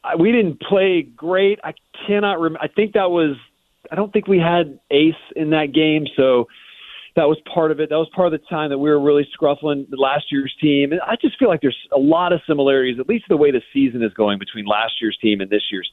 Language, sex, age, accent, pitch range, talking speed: English, male, 40-59, American, 120-155 Hz, 245 wpm